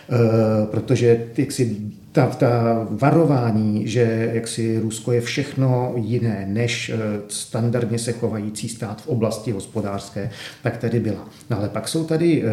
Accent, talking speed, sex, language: native, 115 wpm, male, Czech